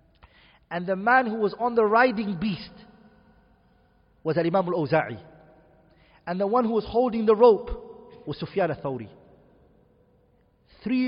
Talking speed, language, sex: 135 wpm, English, male